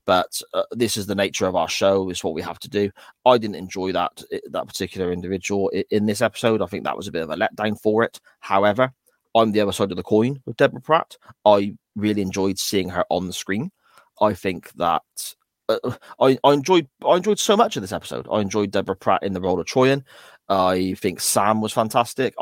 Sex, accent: male, British